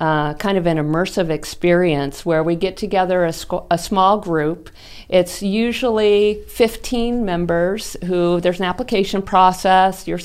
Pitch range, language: 160-205 Hz, English